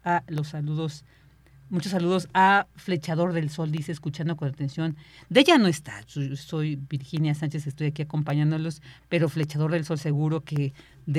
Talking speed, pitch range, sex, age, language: 160 wpm, 145-175 Hz, female, 40-59, Spanish